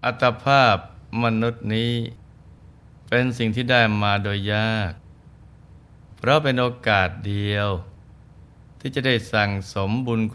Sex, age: male, 20-39